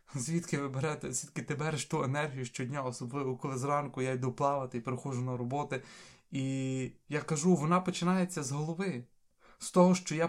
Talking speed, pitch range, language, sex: 175 wpm, 135-165 Hz, Ukrainian, male